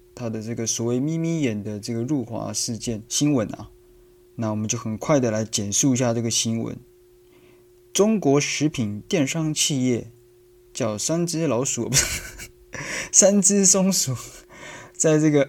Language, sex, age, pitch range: Chinese, male, 20-39, 115-150 Hz